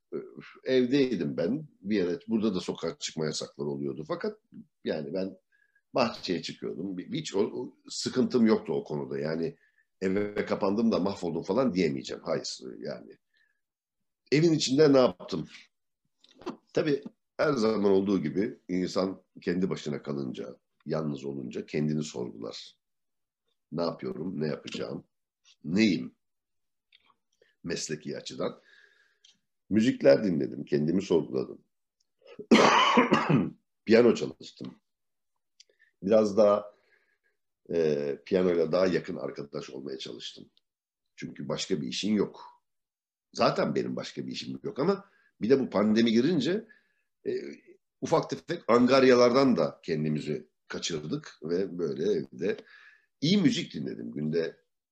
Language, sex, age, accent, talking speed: Turkish, male, 60-79, native, 110 wpm